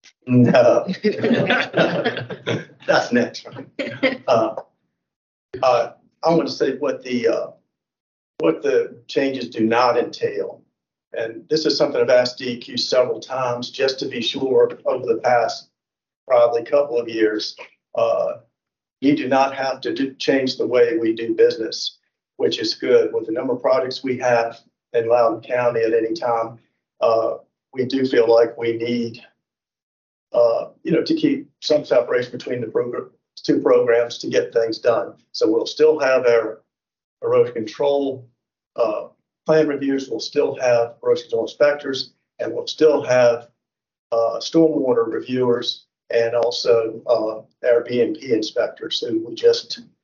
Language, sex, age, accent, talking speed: English, male, 50-69, American, 150 wpm